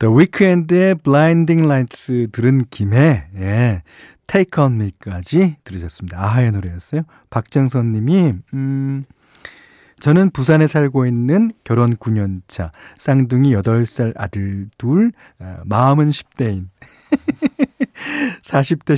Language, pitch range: Korean, 110-160 Hz